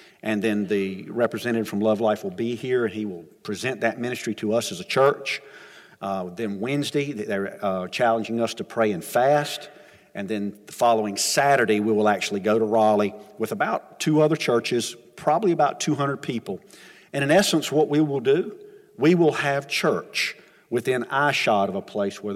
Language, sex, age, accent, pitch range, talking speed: English, male, 50-69, American, 105-145 Hz, 185 wpm